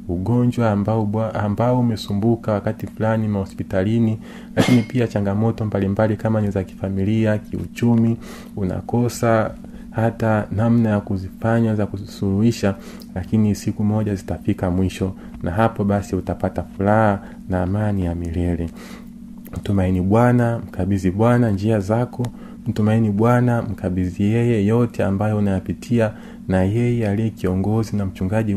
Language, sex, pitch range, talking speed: Swahili, male, 95-115 Hz, 115 wpm